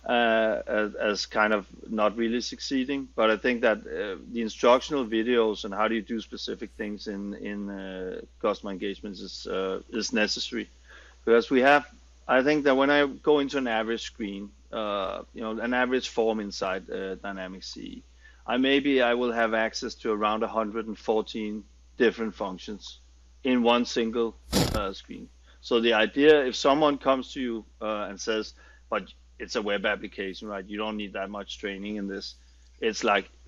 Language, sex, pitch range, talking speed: English, male, 105-125 Hz, 175 wpm